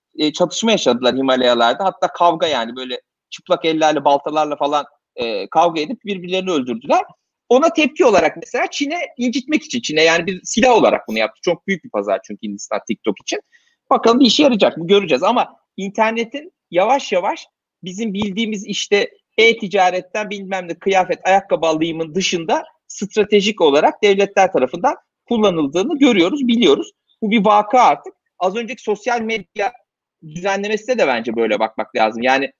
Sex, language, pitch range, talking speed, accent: male, Turkish, 165-220 Hz, 150 wpm, native